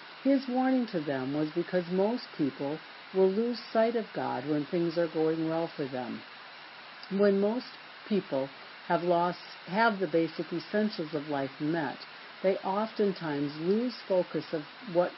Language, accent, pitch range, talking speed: English, American, 155-210 Hz, 150 wpm